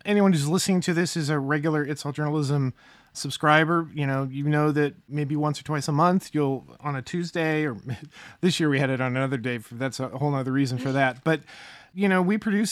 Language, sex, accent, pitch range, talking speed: English, male, American, 140-165 Hz, 230 wpm